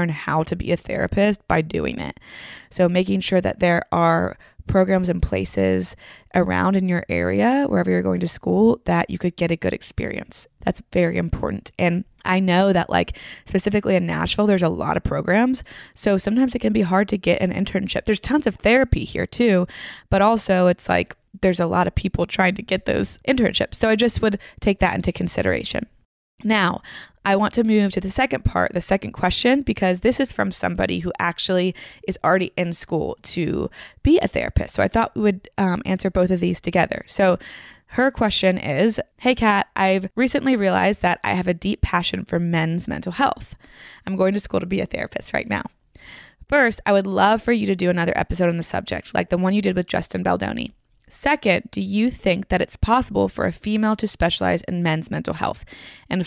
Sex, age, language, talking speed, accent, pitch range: female, 20-39, English, 205 wpm, American, 175-210 Hz